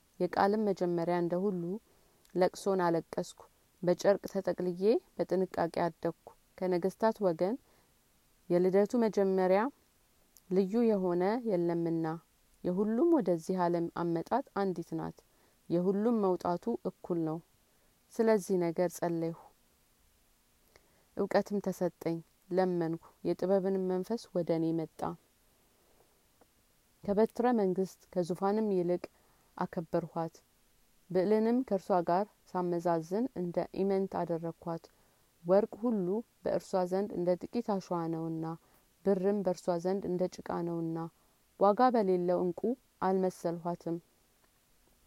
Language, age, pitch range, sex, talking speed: Amharic, 30-49, 170-195 Hz, female, 85 wpm